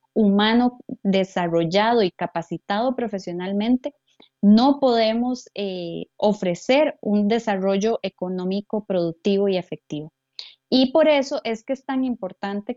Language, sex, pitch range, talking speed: Spanish, female, 185-250 Hz, 110 wpm